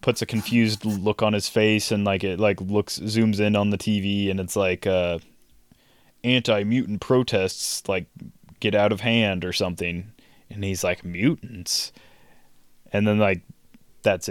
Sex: male